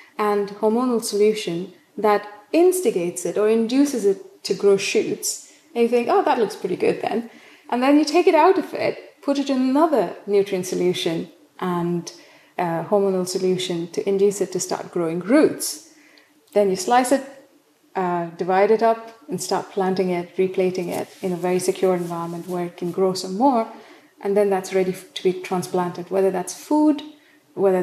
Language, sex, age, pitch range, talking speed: English, female, 30-49, 185-270 Hz, 175 wpm